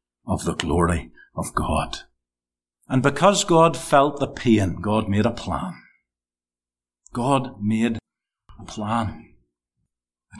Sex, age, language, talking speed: male, 60-79, English, 115 wpm